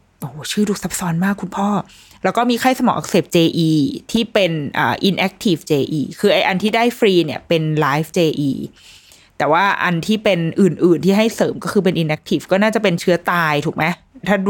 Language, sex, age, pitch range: Thai, female, 20-39, 160-205 Hz